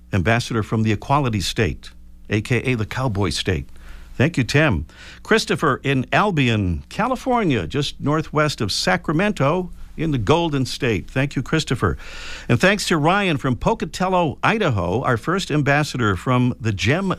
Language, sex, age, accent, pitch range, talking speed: English, male, 50-69, American, 110-160 Hz, 140 wpm